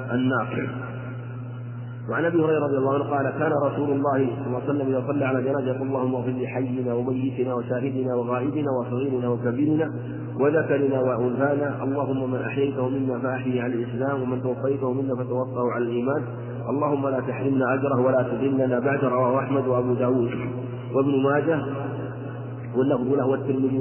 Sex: male